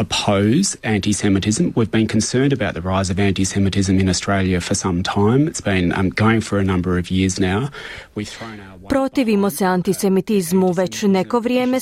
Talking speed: 105 wpm